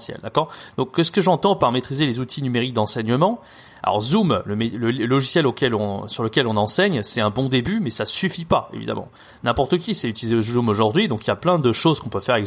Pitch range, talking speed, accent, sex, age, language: 115-175 Hz, 240 wpm, French, male, 20-39, French